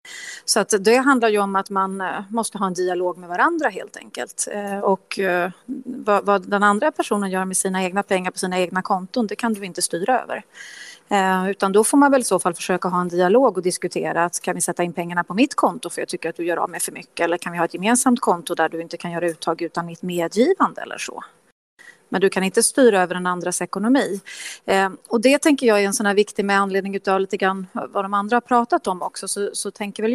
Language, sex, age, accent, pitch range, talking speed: Swedish, female, 30-49, native, 185-235 Hz, 245 wpm